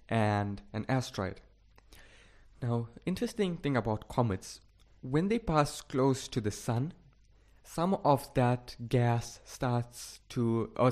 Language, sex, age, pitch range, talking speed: English, male, 20-39, 105-130 Hz, 120 wpm